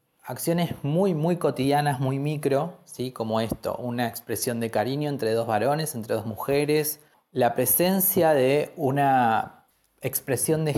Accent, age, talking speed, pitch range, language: Argentinian, 20-39, 140 wpm, 125-160 Hz, Spanish